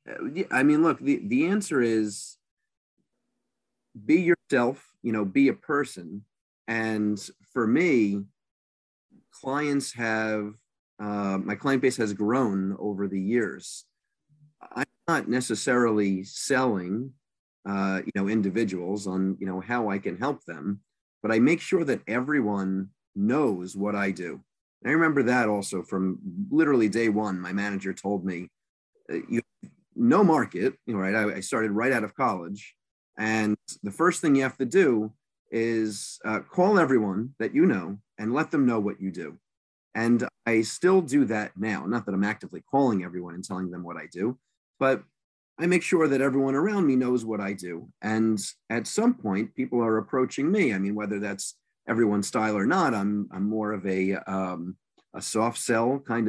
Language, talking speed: English, 165 wpm